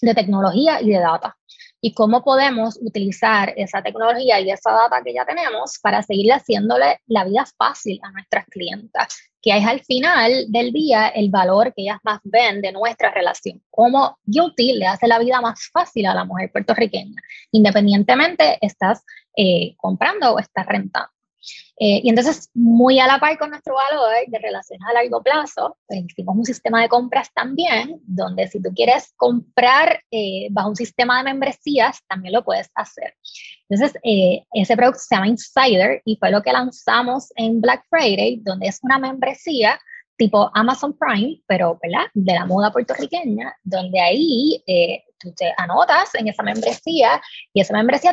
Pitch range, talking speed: 200-260 Hz, 170 wpm